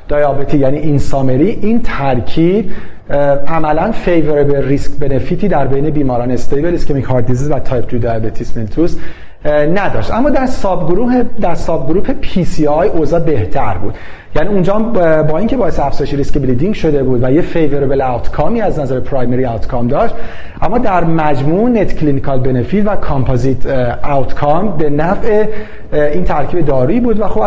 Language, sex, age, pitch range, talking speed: Persian, male, 40-59, 135-175 Hz, 155 wpm